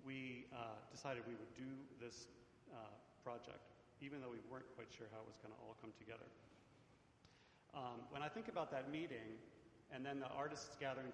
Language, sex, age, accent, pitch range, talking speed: English, male, 40-59, American, 115-140 Hz, 190 wpm